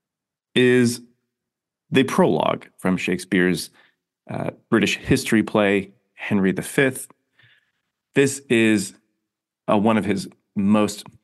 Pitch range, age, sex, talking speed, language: 100-120 Hz, 30-49, male, 95 wpm, English